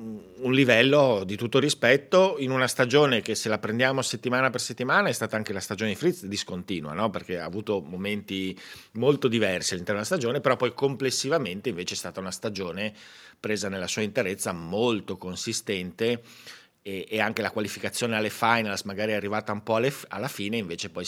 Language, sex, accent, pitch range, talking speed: Italian, male, native, 100-125 Hz, 175 wpm